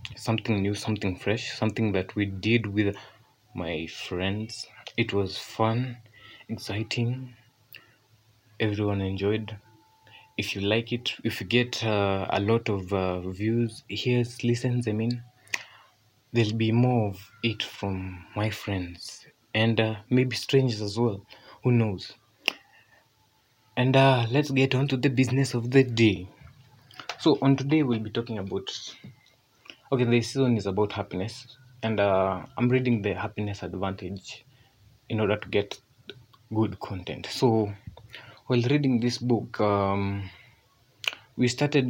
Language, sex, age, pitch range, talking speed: Swahili, male, 20-39, 100-120 Hz, 135 wpm